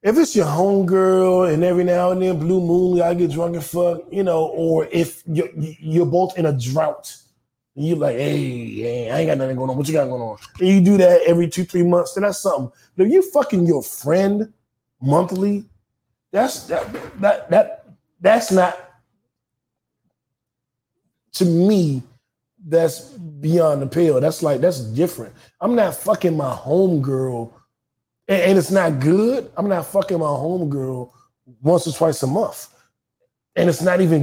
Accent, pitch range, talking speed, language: American, 130-185 Hz, 175 wpm, English